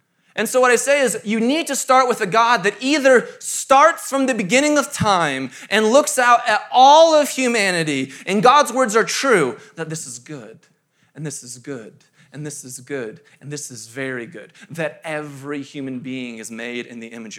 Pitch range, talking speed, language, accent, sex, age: 180-265 Hz, 205 wpm, English, American, male, 20-39